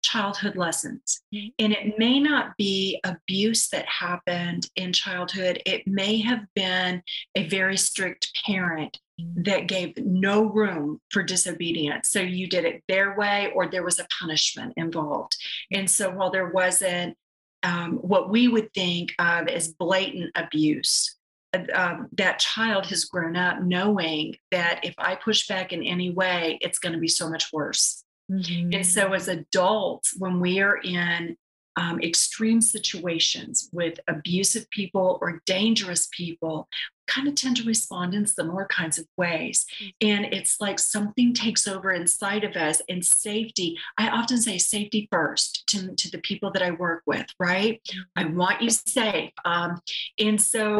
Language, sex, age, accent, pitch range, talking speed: English, female, 40-59, American, 175-210 Hz, 160 wpm